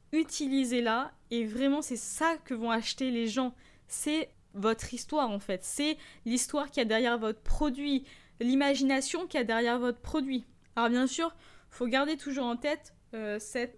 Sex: female